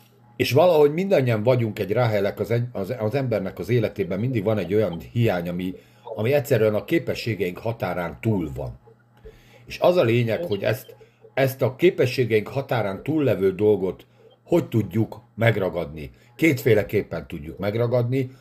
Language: Hungarian